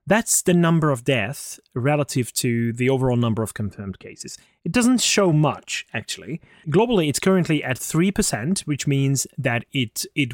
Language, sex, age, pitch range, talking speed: English, male, 30-49, 115-155 Hz, 165 wpm